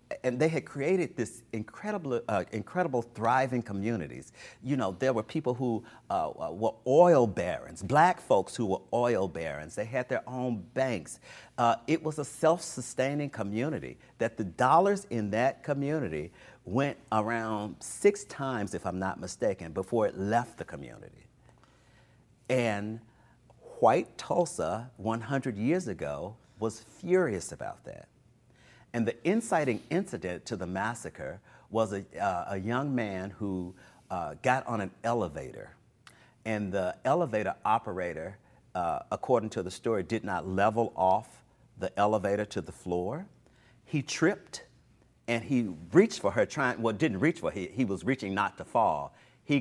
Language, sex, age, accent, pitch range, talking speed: English, male, 50-69, American, 105-130 Hz, 150 wpm